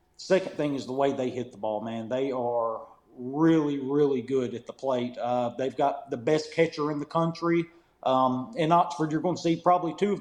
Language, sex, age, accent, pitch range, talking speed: English, male, 40-59, American, 130-160 Hz, 215 wpm